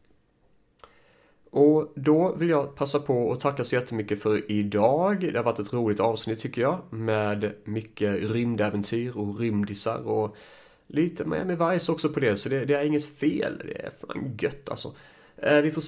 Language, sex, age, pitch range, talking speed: Swedish, male, 30-49, 110-145 Hz, 180 wpm